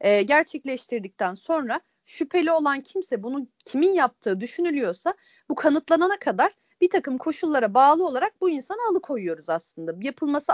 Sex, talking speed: female, 125 wpm